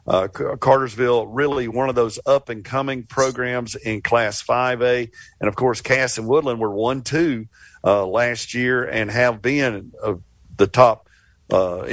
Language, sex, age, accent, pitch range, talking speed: English, male, 50-69, American, 110-140 Hz, 165 wpm